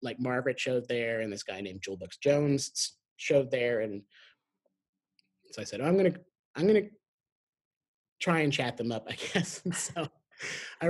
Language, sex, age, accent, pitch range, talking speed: English, male, 30-49, American, 125-175 Hz, 185 wpm